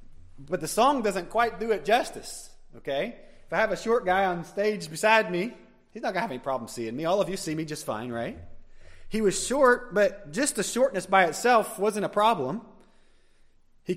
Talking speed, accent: 210 wpm, American